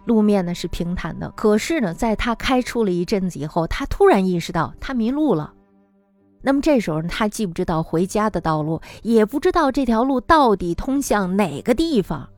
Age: 20-39